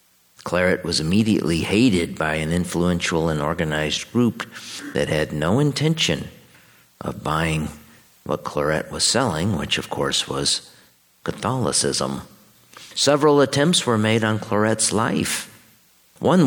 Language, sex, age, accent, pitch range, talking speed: English, male, 50-69, American, 75-105 Hz, 120 wpm